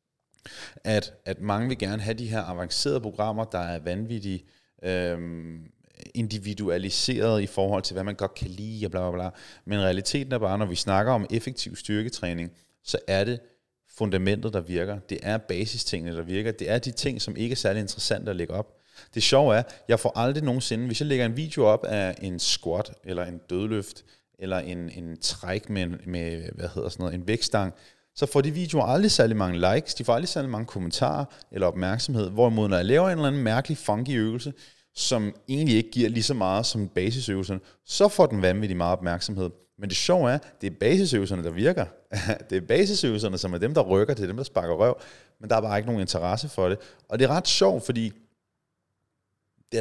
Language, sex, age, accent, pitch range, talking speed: Danish, male, 30-49, native, 95-120 Hz, 200 wpm